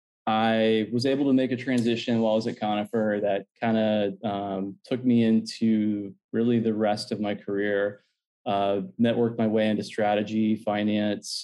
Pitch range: 100-115 Hz